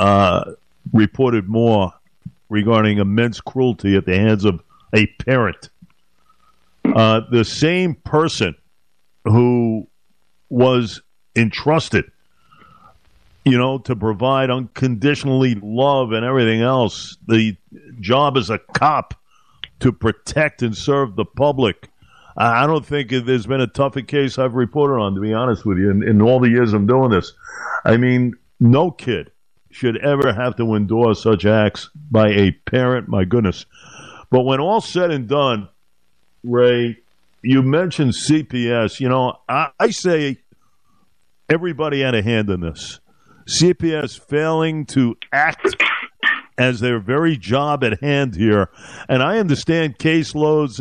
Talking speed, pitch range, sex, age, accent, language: 135 wpm, 110-140 Hz, male, 50-69, American, English